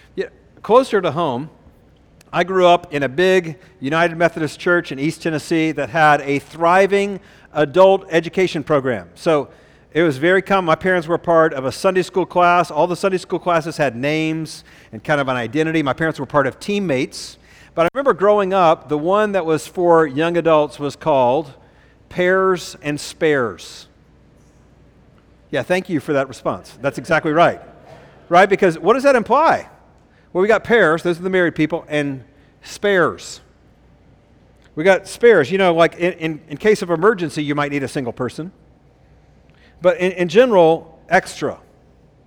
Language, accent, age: English, American, 50-69